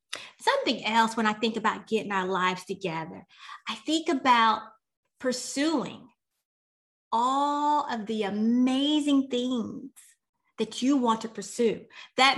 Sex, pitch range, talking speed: female, 220-290 Hz, 120 wpm